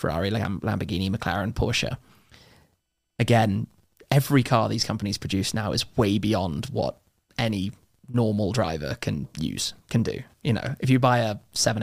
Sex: male